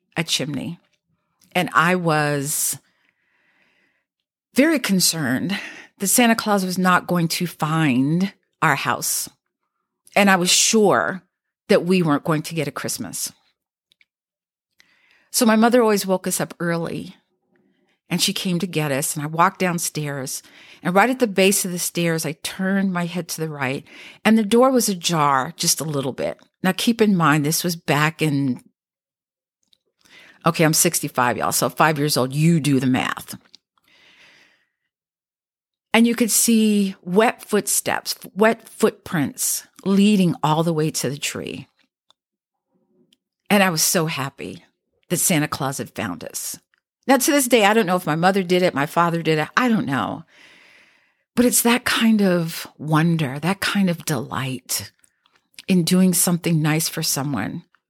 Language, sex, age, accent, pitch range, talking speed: English, female, 50-69, American, 155-200 Hz, 160 wpm